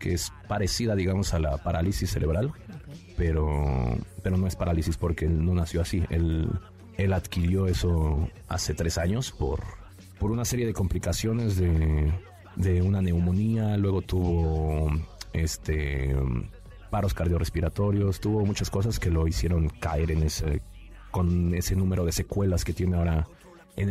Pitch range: 85-100 Hz